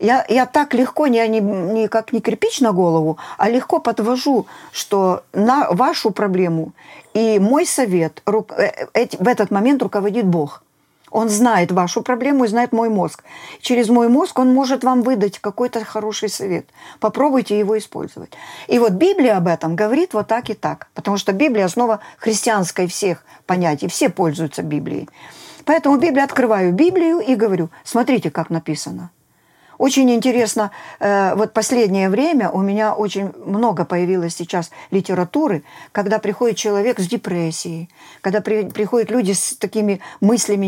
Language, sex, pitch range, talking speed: Ukrainian, female, 185-245 Hz, 155 wpm